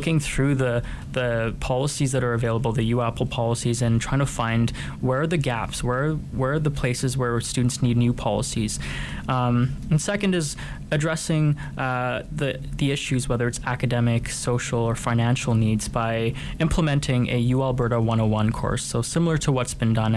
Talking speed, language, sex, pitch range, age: 170 wpm, English, male, 115-130 Hz, 20-39